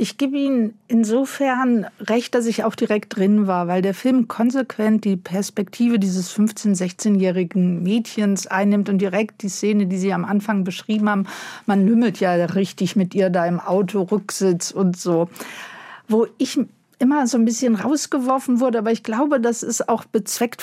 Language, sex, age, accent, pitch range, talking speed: German, female, 50-69, German, 195-235 Hz, 170 wpm